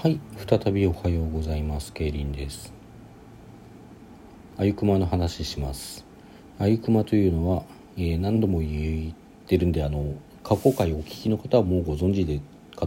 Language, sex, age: Japanese, male, 40-59